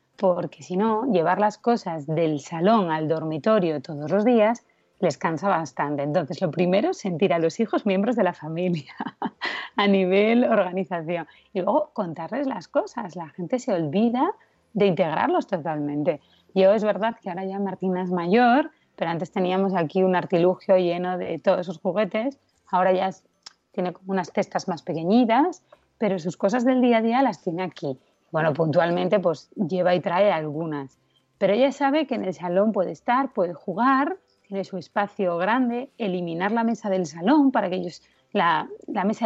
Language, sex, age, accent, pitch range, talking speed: Spanish, female, 30-49, Spanish, 180-230 Hz, 175 wpm